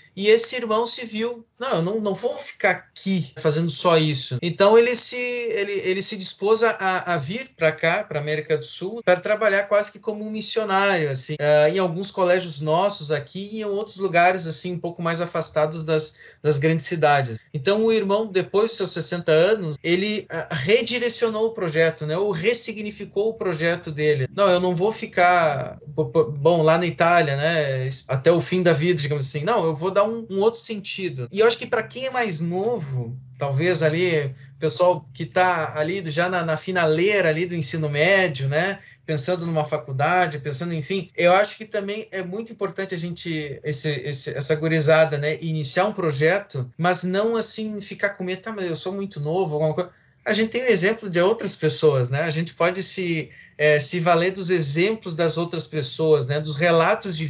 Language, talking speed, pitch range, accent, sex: Portuguese, 195 wpm, 155-195 Hz, Brazilian, male